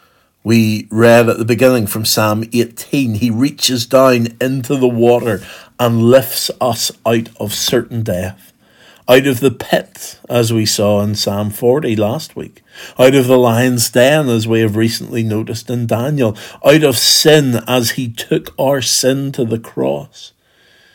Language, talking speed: English, 160 wpm